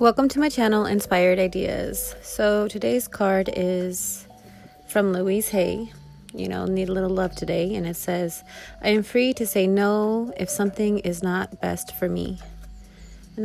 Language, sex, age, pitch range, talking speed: English, female, 30-49, 185-220 Hz, 165 wpm